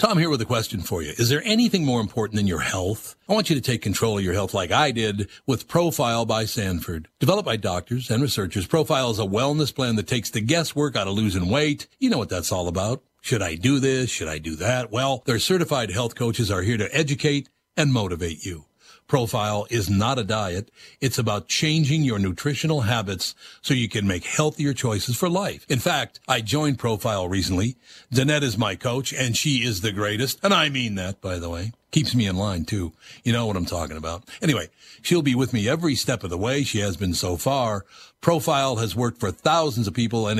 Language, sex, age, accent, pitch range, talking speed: English, male, 60-79, American, 105-135 Hz, 225 wpm